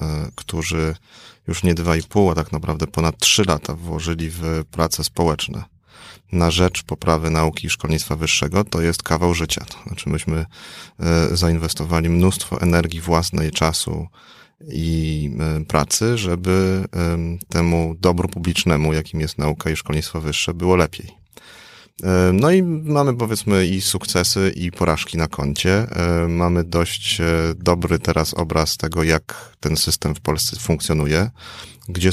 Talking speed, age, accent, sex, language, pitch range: 135 wpm, 30-49, native, male, Polish, 80-90 Hz